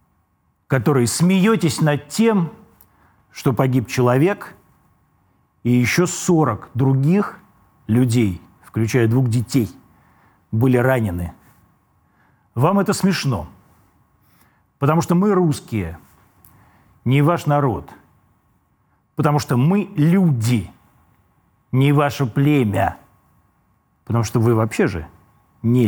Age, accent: 40-59, native